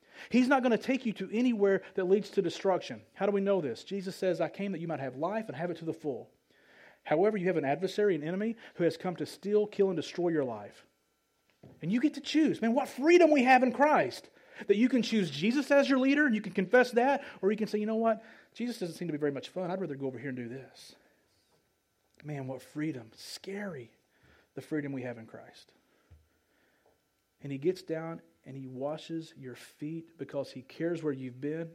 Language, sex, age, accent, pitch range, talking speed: English, male, 40-59, American, 145-200 Hz, 230 wpm